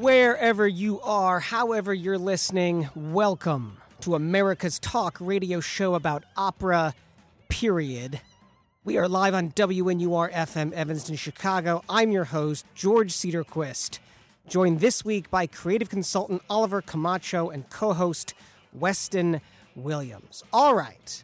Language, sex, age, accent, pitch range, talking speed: English, male, 40-59, American, 155-195 Hz, 115 wpm